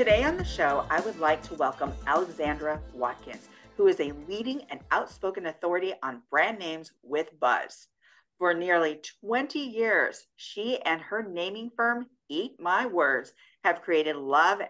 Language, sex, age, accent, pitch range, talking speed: English, female, 50-69, American, 160-230 Hz, 155 wpm